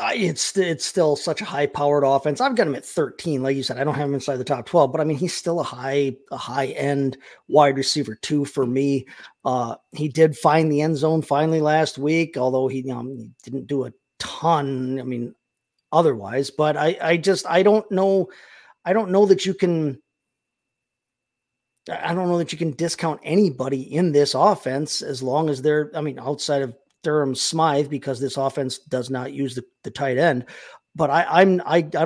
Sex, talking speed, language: male, 205 wpm, English